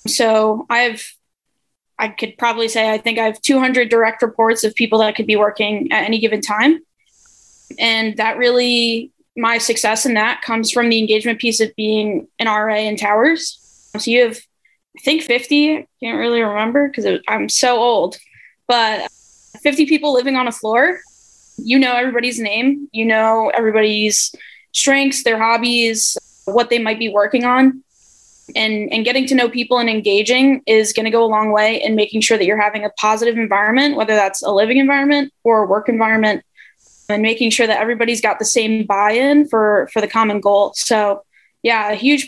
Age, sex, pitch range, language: 10-29, female, 215-245 Hz, English